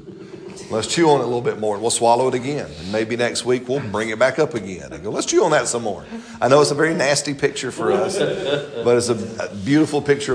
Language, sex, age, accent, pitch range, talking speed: English, male, 40-59, American, 95-125 Hz, 260 wpm